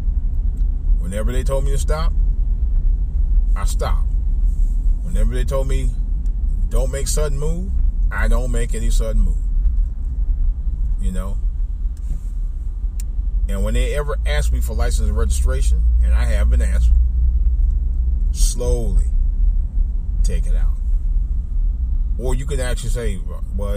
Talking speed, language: 125 wpm, English